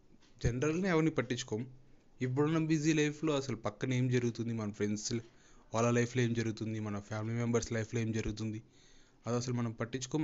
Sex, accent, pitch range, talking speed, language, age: male, native, 110-130 Hz, 150 wpm, Telugu, 30-49